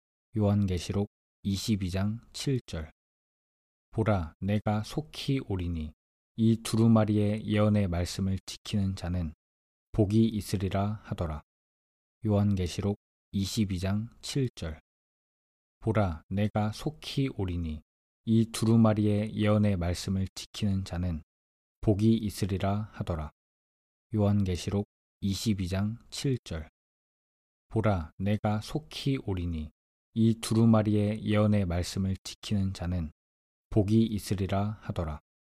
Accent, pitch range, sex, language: native, 85-110 Hz, male, Korean